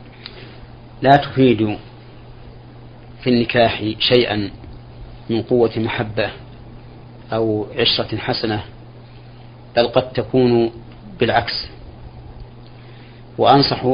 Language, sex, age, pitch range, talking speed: Arabic, male, 40-59, 115-120 Hz, 70 wpm